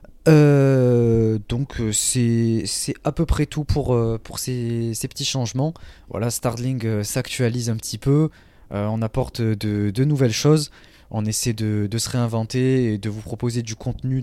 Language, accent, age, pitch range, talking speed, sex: French, French, 20-39, 105-125 Hz, 165 wpm, male